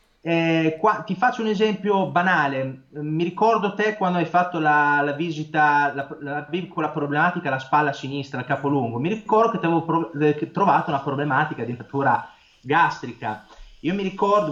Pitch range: 140-200 Hz